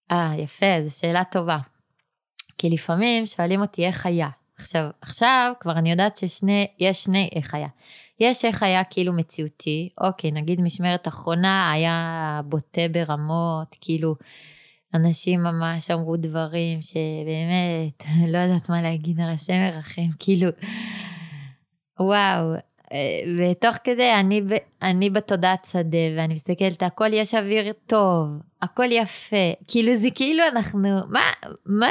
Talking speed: 120 wpm